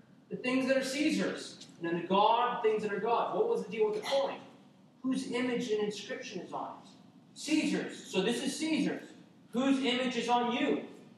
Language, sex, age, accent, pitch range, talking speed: English, male, 40-59, American, 170-230 Hz, 200 wpm